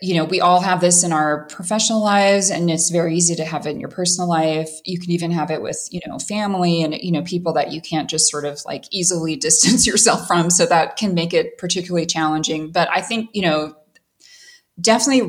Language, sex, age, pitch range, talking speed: English, female, 20-39, 165-200 Hz, 230 wpm